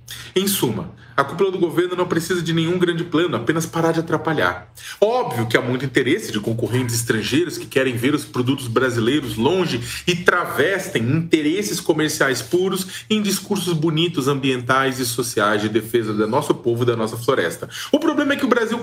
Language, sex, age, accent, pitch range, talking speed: Portuguese, male, 40-59, Brazilian, 125-175 Hz, 180 wpm